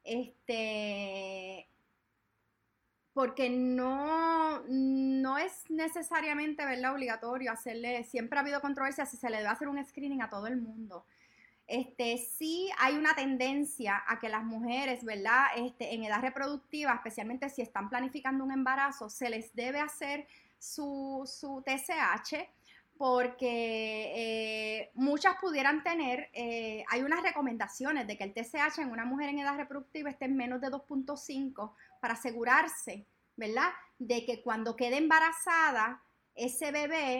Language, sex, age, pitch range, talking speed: Spanish, female, 20-39, 235-295 Hz, 135 wpm